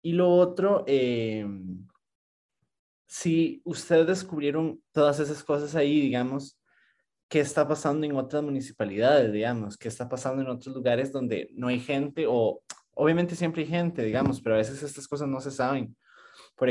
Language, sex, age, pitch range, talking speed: Spanish, male, 20-39, 115-145 Hz, 160 wpm